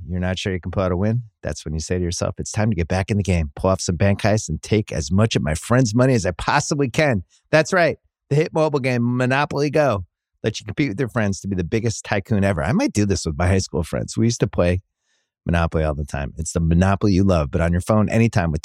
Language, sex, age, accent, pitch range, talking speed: English, male, 30-49, American, 90-135 Hz, 285 wpm